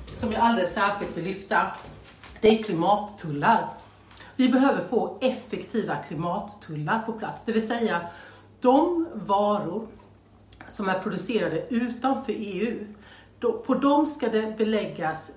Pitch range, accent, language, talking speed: 175-230 Hz, native, Swedish, 120 wpm